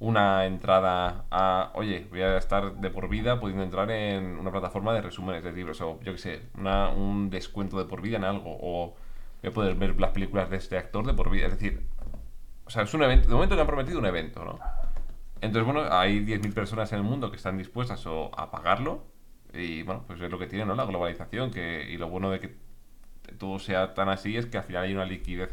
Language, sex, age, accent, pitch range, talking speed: Spanish, male, 20-39, Spanish, 85-105 Hz, 235 wpm